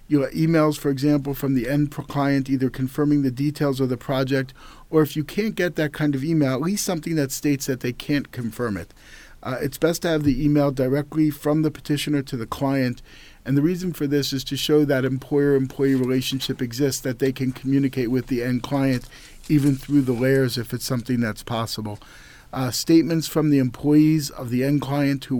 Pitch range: 130-150 Hz